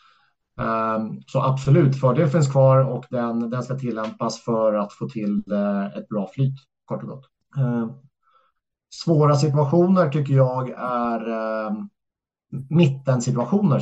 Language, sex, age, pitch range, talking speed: Swedish, male, 30-49, 110-135 Hz, 115 wpm